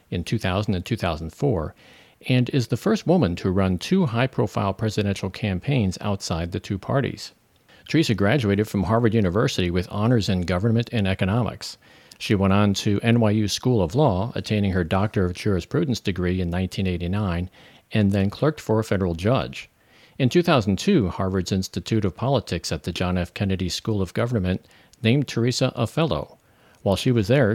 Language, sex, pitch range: English, male, 95-120 Hz